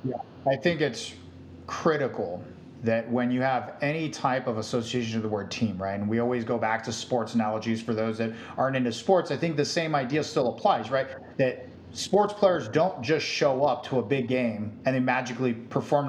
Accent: American